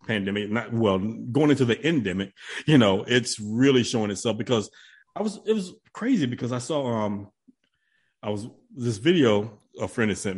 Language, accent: English, American